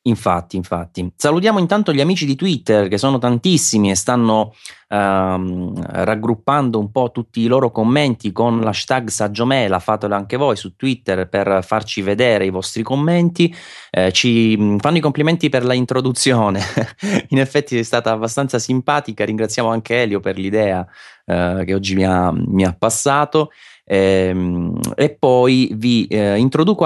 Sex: male